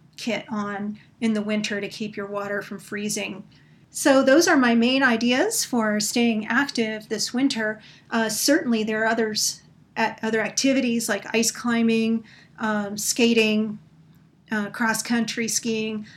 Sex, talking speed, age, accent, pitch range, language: female, 140 wpm, 40-59, American, 210-235 Hz, English